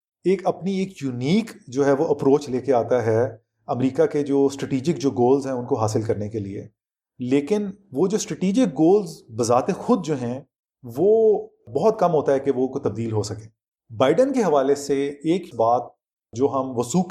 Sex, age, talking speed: male, 30-49, 190 wpm